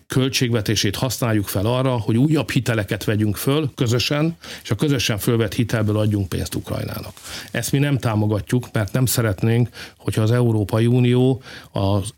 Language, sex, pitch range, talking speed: Hungarian, male, 110-125 Hz, 150 wpm